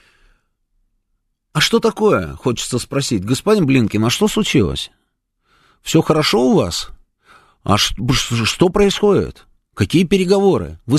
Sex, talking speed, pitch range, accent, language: male, 110 wpm, 125-185 Hz, native, Russian